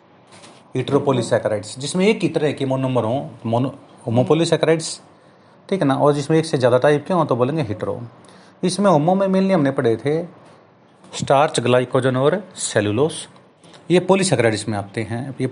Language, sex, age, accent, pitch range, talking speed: Hindi, male, 30-49, native, 120-150 Hz, 160 wpm